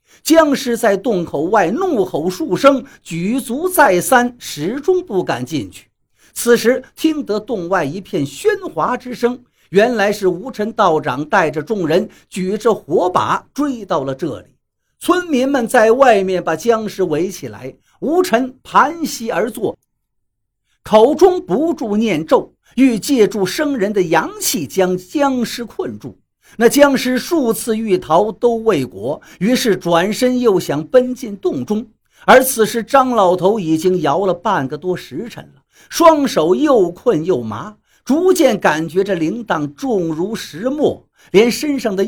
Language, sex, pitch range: Chinese, male, 175-265 Hz